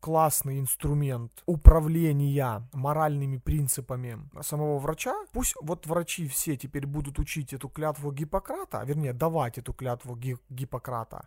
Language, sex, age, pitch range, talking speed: Russian, male, 30-49, 130-160 Hz, 115 wpm